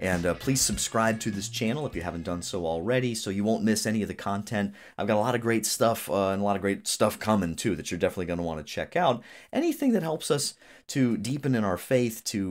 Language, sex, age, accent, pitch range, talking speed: English, male, 30-49, American, 90-115 Hz, 270 wpm